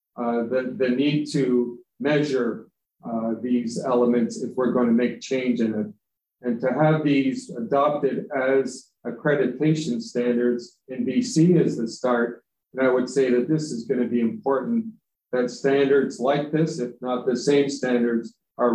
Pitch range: 120-140 Hz